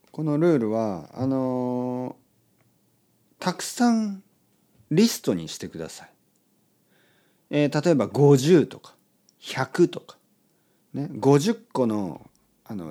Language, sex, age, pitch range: Japanese, male, 50-69, 125-185 Hz